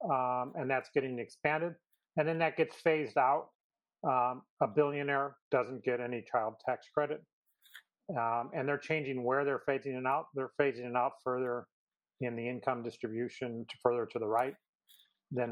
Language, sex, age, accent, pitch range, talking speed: English, male, 40-59, American, 125-165 Hz, 170 wpm